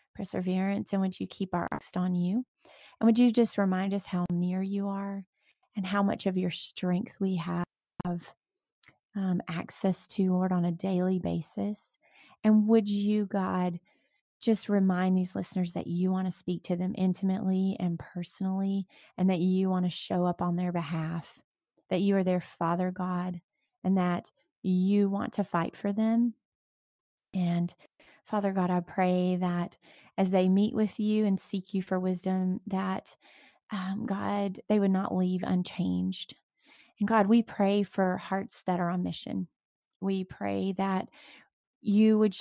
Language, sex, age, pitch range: English, female, 30-49, 180-205 Hz